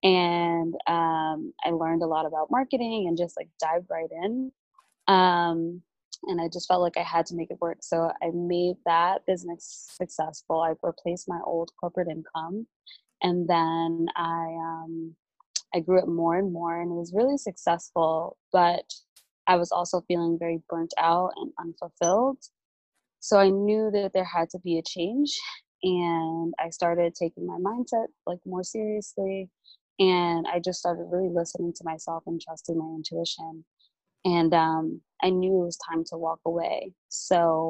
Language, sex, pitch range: English, female, 165-180 Hz